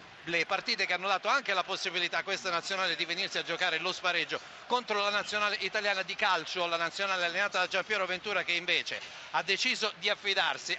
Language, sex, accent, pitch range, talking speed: Italian, male, native, 180-215 Hz, 200 wpm